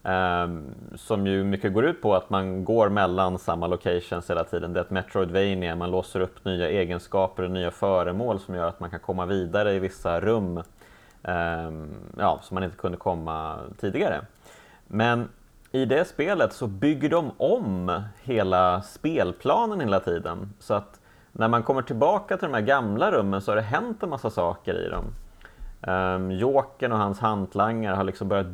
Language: English